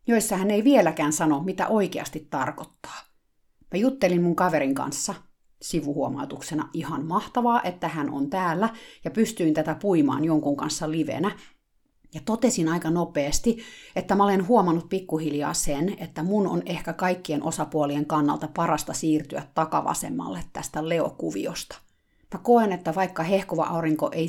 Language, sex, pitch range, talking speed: Finnish, female, 155-210 Hz, 140 wpm